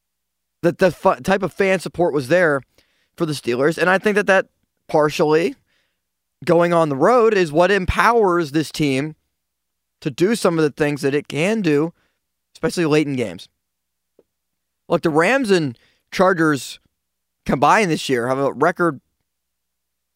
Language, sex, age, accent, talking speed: English, male, 20-39, American, 155 wpm